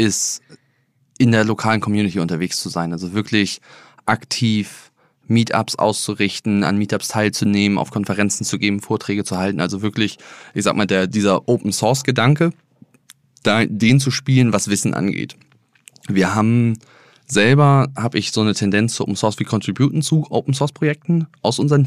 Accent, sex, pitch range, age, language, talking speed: German, male, 95-115 Hz, 20-39, English, 150 wpm